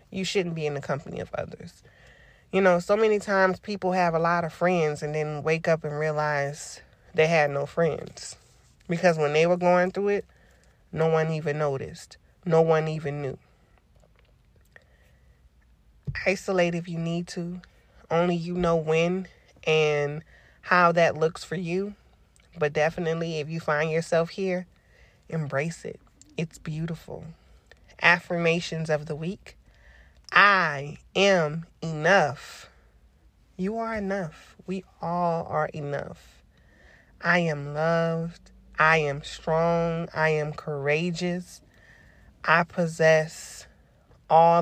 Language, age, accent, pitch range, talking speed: English, 30-49, American, 145-175 Hz, 130 wpm